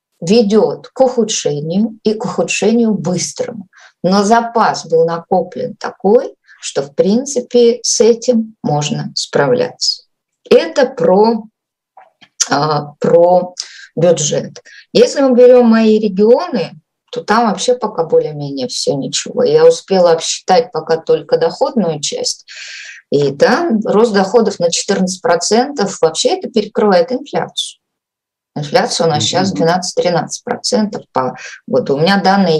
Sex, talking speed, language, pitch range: female, 120 wpm, Russian, 180-250 Hz